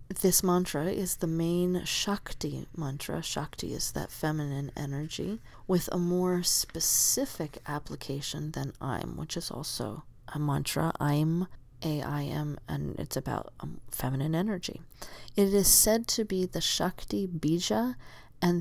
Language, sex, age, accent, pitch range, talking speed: English, female, 30-49, American, 145-180 Hz, 140 wpm